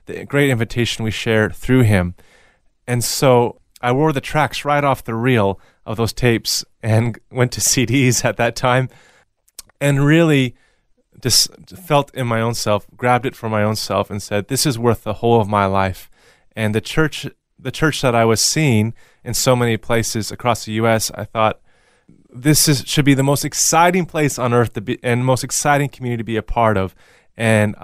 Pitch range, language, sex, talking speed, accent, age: 105-125 Hz, English, male, 195 wpm, American, 30-49